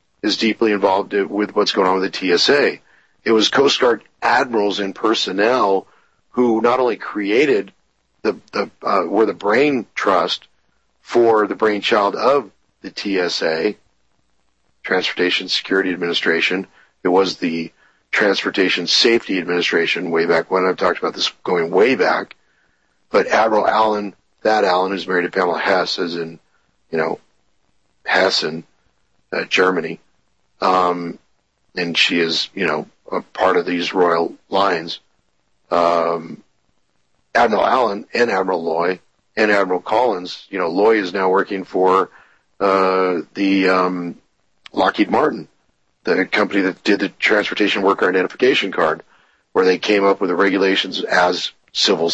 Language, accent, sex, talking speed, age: English, American, male, 140 wpm, 50-69